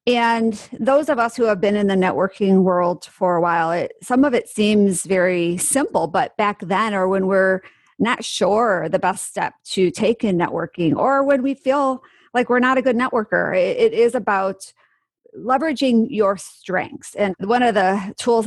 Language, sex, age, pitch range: English, female, 40-59, 190-240 Hz